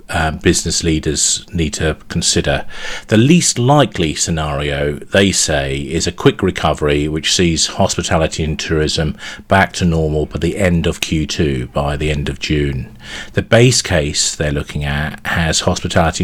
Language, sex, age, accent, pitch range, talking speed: English, male, 40-59, British, 75-95 Hz, 155 wpm